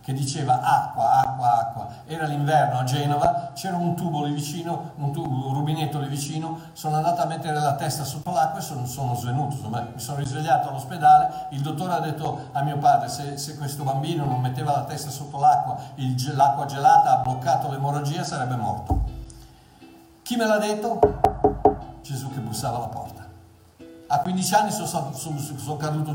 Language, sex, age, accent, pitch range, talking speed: Italian, male, 60-79, native, 140-170 Hz, 175 wpm